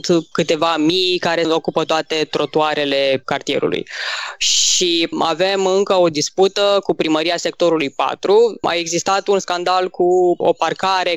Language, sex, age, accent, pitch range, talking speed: Romanian, female, 20-39, native, 165-210 Hz, 125 wpm